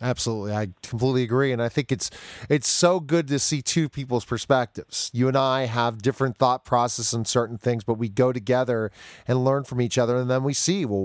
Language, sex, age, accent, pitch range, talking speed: English, male, 30-49, American, 120-150 Hz, 215 wpm